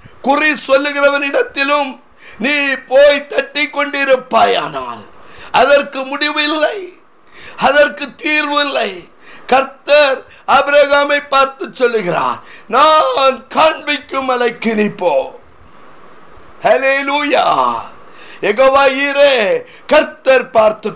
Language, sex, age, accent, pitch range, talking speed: Tamil, male, 50-69, native, 270-295 Hz, 55 wpm